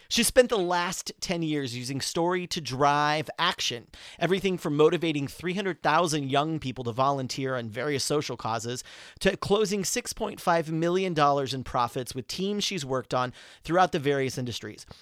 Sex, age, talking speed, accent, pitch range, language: male, 30-49, 150 wpm, American, 140-180 Hz, English